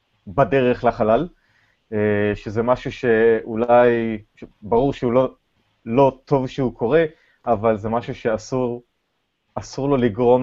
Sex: male